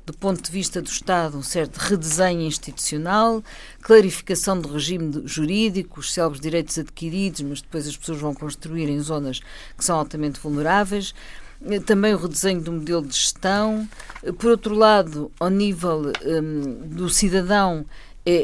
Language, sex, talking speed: Portuguese, female, 150 wpm